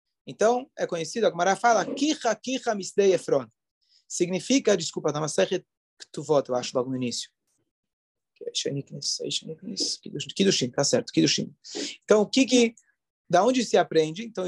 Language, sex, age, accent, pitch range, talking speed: Portuguese, male, 30-49, Brazilian, 170-230 Hz, 125 wpm